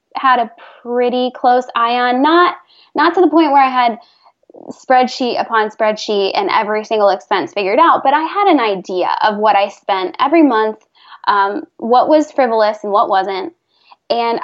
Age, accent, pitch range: 10-29, American, 215-280 Hz